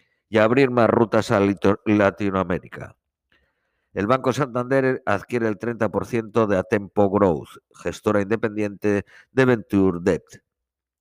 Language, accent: Spanish, Spanish